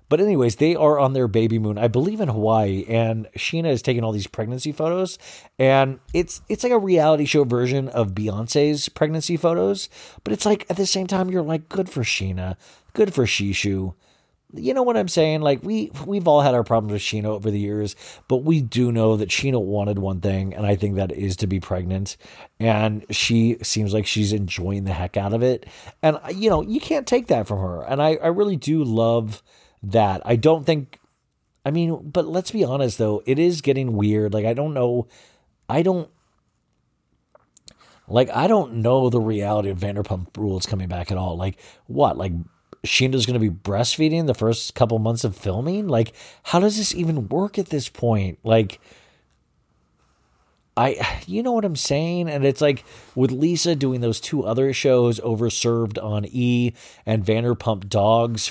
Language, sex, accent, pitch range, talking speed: English, male, American, 105-150 Hz, 190 wpm